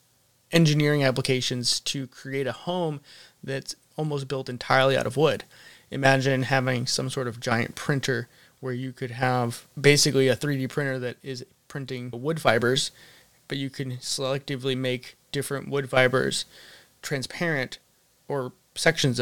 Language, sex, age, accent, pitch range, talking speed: English, male, 20-39, American, 125-145 Hz, 135 wpm